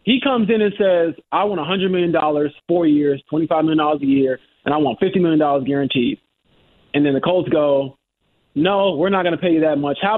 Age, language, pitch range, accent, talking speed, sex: 20-39, English, 150-200 Hz, American, 235 wpm, male